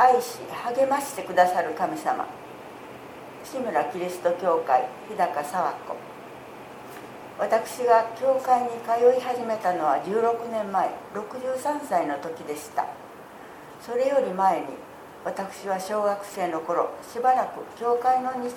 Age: 60-79